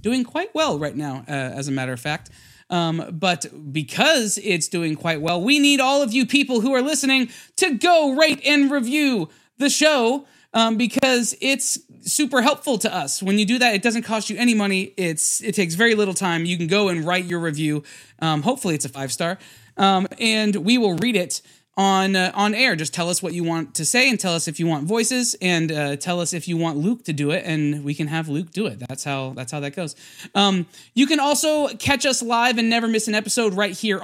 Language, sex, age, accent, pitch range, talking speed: English, male, 20-39, American, 165-235 Hz, 235 wpm